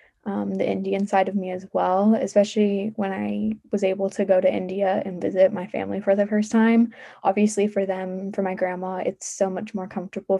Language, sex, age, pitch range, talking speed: English, female, 10-29, 190-215 Hz, 210 wpm